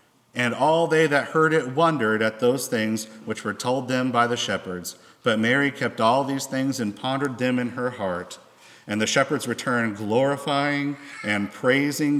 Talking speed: 175 wpm